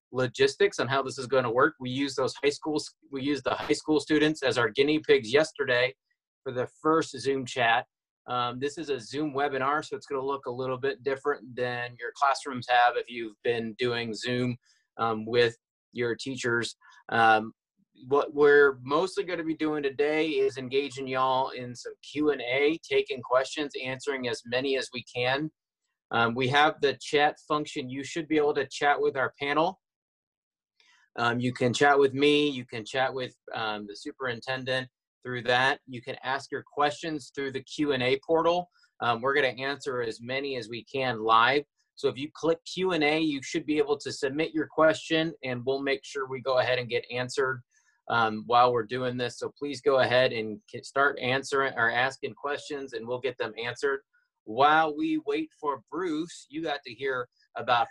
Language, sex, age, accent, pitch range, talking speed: English, male, 30-49, American, 125-155 Hz, 190 wpm